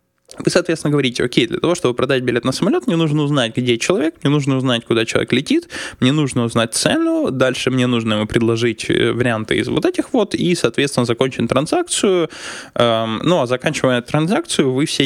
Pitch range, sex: 120-175 Hz, male